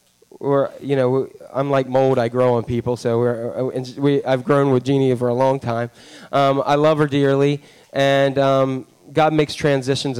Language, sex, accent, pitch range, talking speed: English, male, American, 125-140 Hz, 190 wpm